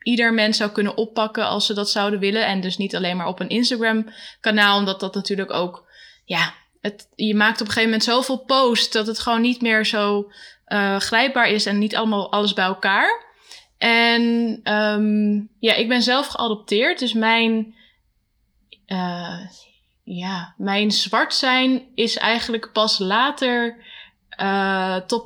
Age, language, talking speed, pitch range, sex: 10-29, Dutch, 160 wpm, 200-230 Hz, female